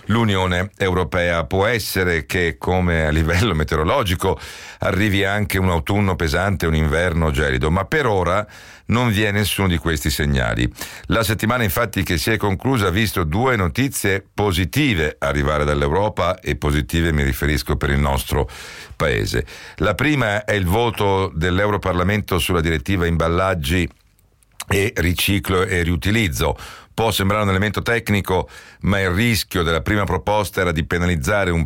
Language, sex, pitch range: Italian, male, 80-100 Hz